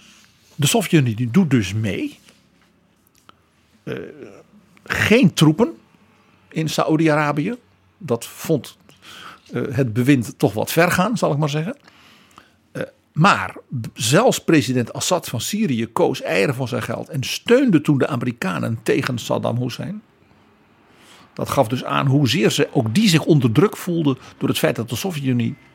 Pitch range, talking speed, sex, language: 125-170 Hz, 140 wpm, male, Dutch